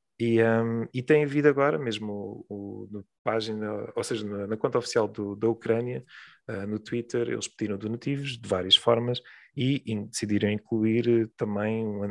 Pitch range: 105-120 Hz